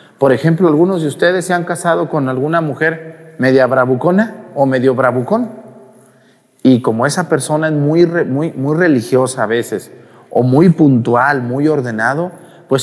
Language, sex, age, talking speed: Spanish, male, 40-59, 160 wpm